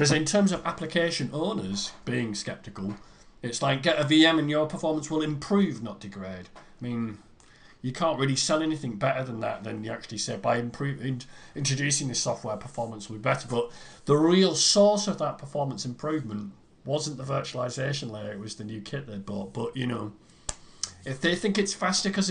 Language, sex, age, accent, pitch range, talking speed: English, male, 40-59, British, 115-155 Hz, 190 wpm